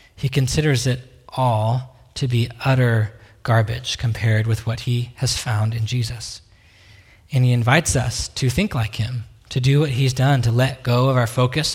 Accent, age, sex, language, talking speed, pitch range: American, 20-39, male, English, 180 wpm, 115-135 Hz